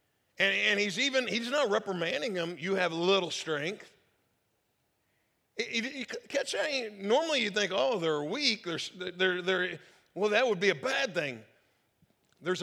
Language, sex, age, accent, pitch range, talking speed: English, male, 50-69, American, 145-185 Hz, 160 wpm